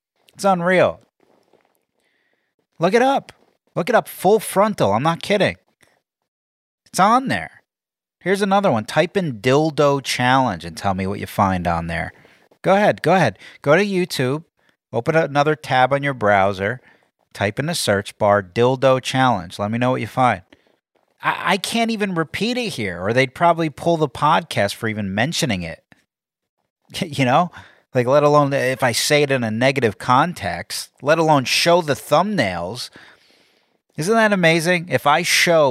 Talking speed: 165 wpm